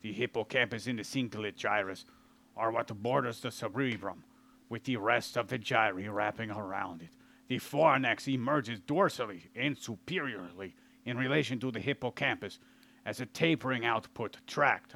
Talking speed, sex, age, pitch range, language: 145 wpm, male, 40-59, 110-135 Hz, English